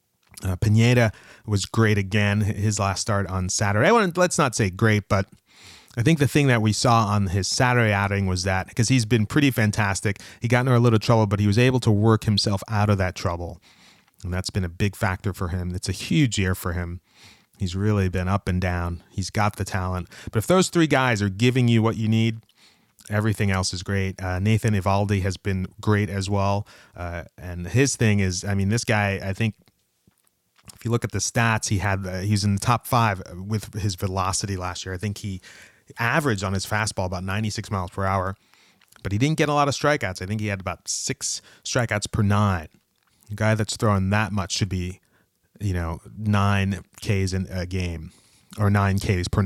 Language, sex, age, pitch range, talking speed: English, male, 30-49, 95-110 Hz, 215 wpm